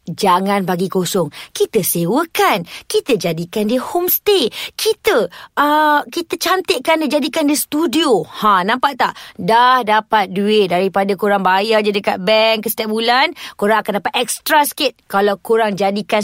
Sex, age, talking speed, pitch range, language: female, 20-39, 145 wpm, 210-300 Hz, Malay